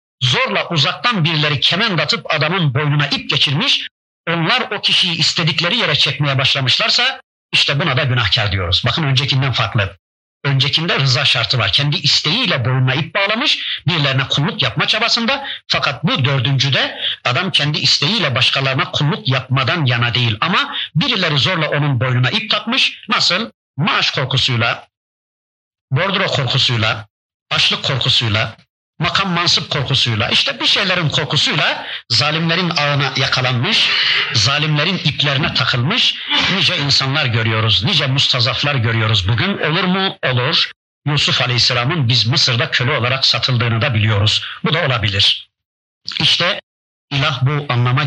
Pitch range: 120-155 Hz